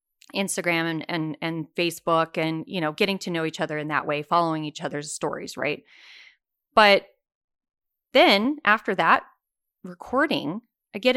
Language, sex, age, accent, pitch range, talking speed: English, female, 30-49, American, 165-230 Hz, 150 wpm